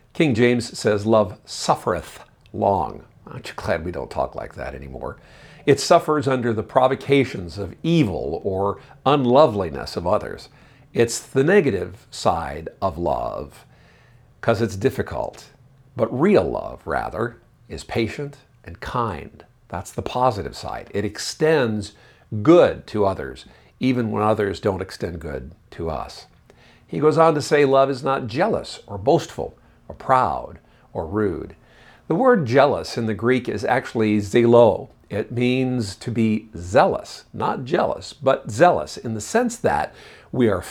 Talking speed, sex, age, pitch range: 145 wpm, male, 50-69, 105-135 Hz